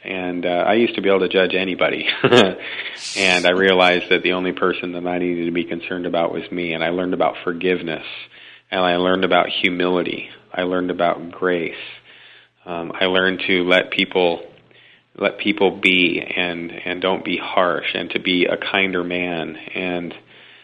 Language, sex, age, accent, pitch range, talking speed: English, male, 40-59, American, 90-105 Hz, 175 wpm